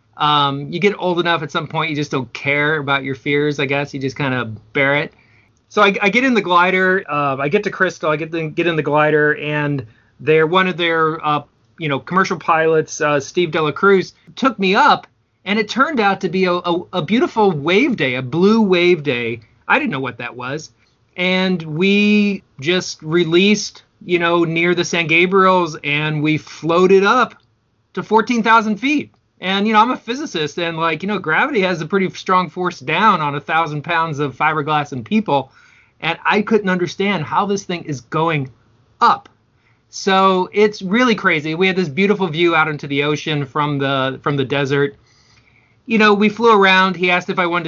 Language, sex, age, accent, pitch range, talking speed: English, male, 30-49, American, 140-185 Hz, 205 wpm